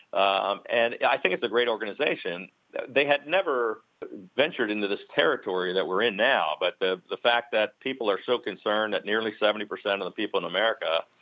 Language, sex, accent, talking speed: English, male, American, 200 wpm